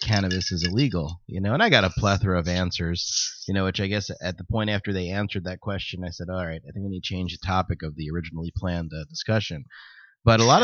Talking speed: 260 wpm